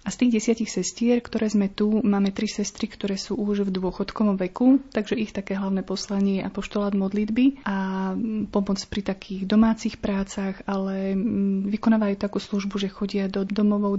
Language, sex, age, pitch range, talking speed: Slovak, female, 30-49, 195-215 Hz, 165 wpm